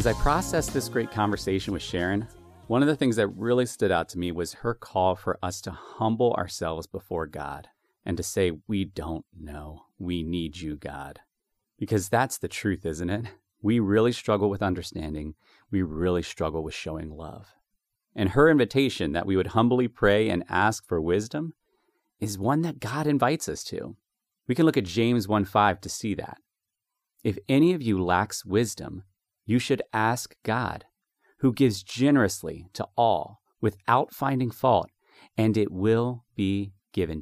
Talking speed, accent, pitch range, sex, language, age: 170 wpm, American, 95-120 Hz, male, English, 30-49